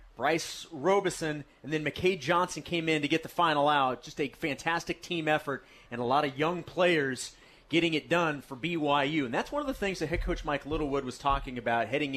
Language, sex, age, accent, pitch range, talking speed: English, male, 30-49, American, 140-180 Hz, 215 wpm